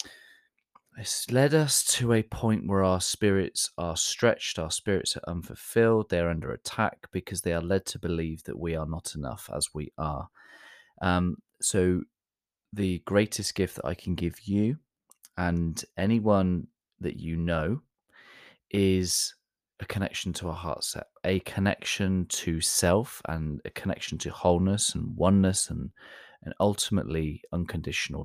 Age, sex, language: 20-39, male, English